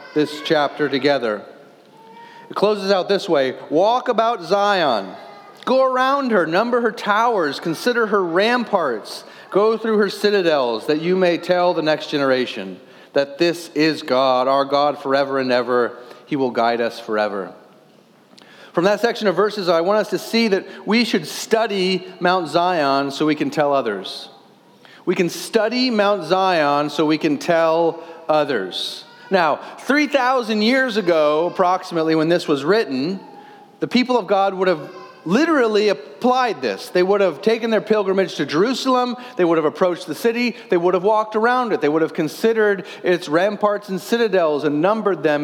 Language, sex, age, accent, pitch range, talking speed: English, male, 30-49, American, 155-220 Hz, 165 wpm